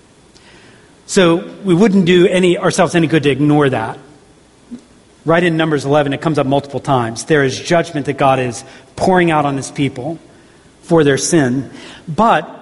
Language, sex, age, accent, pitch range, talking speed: English, male, 40-59, American, 140-175 Hz, 160 wpm